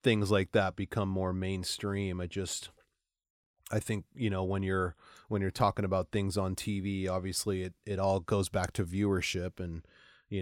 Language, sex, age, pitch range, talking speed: English, male, 30-49, 95-110 Hz, 180 wpm